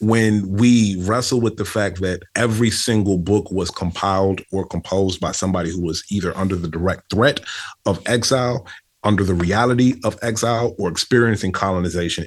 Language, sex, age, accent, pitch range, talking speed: English, male, 30-49, American, 90-110 Hz, 160 wpm